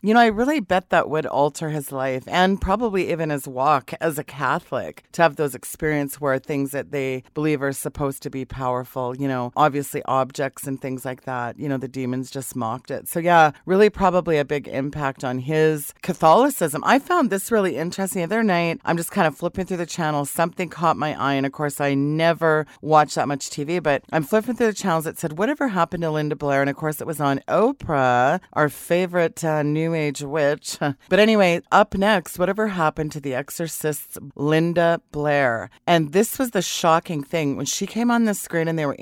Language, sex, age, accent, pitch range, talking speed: English, female, 40-59, American, 145-175 Hz, 210 wpm